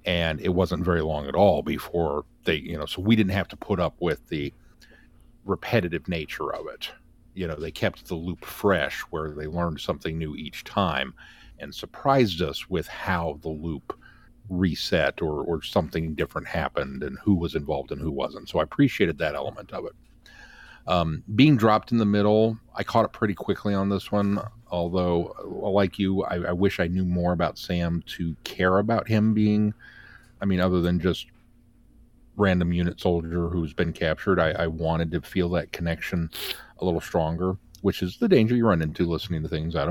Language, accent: English, American